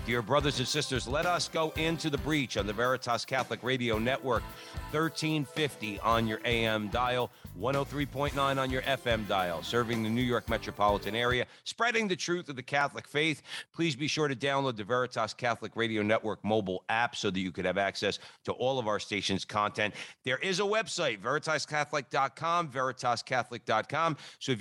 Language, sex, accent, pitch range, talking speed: English, male, American, 110-140 Hz, 175 wpm